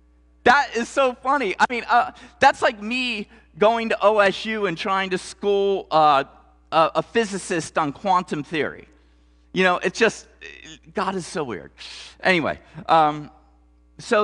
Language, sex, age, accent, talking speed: English, male, 40-59, American, 145 wpm